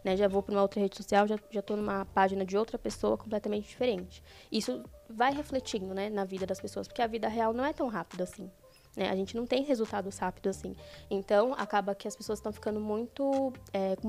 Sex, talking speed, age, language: female, 225 wpm, 10-29, Portuguese